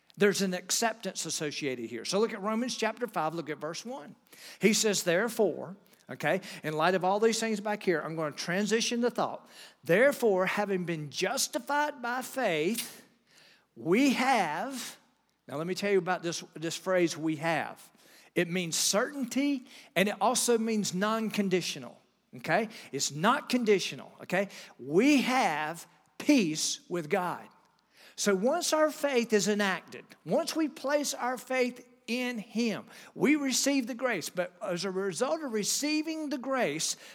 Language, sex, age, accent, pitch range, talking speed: English, male, 50-69, American, 185-255 Hz, 155 wpm